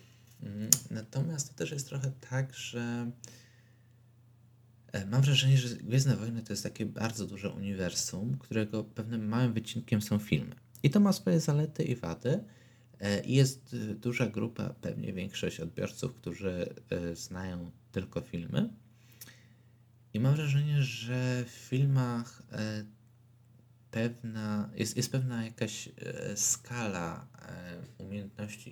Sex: male